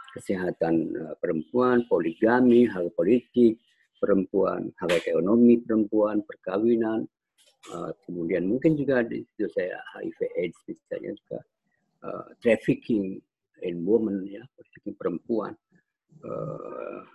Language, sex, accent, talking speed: Indonesian, male, native, 100 wpm